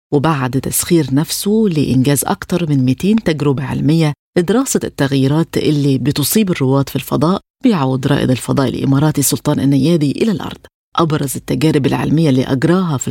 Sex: female